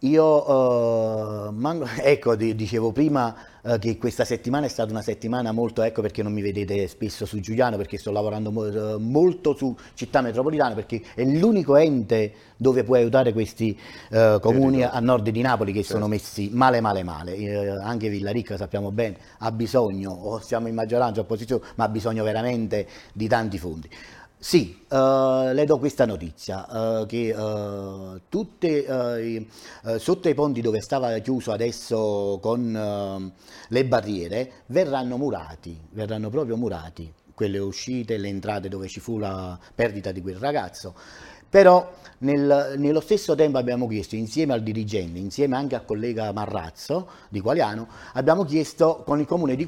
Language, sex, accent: Italian, male, native